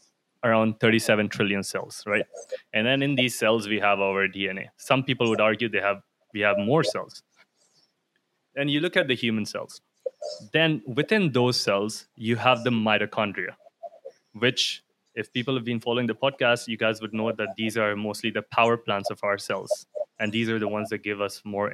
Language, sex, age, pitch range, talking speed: English, male, 20-39, 110-150 Hz, 195 wpm